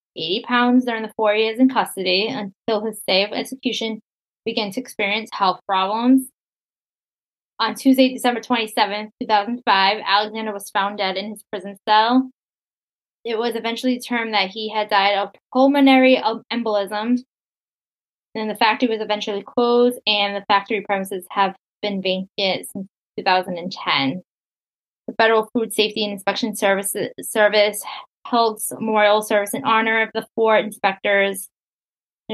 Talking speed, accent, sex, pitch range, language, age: 140 wpm, American, female, 200-225 Hz, English, 10-29